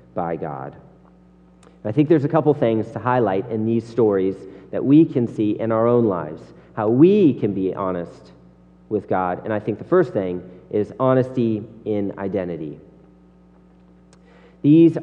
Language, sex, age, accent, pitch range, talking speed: English, male, 40-59, American, 95-120 Hz, 160 wpm